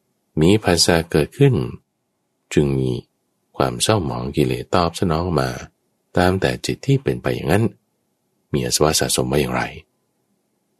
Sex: male